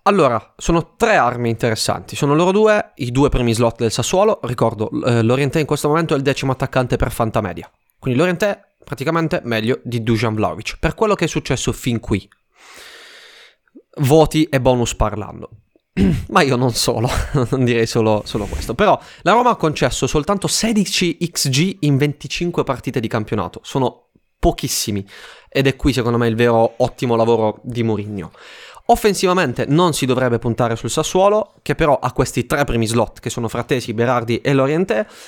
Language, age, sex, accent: Italian, 20-39, male, native